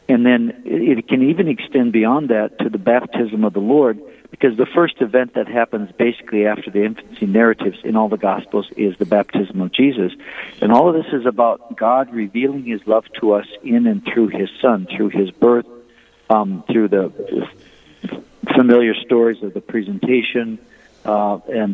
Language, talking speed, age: English, 175 wpm, 50-69